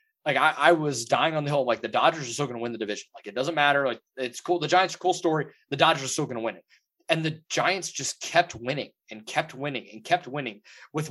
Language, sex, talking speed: English, male, 270 wpm